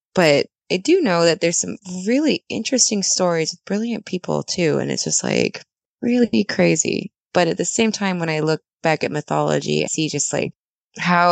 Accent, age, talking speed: American, 20-39, 190 wpm